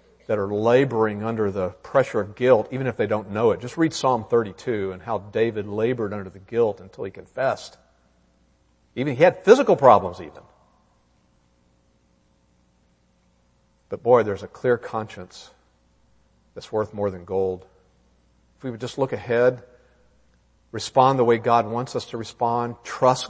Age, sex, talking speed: 50-69, male, 155 wpm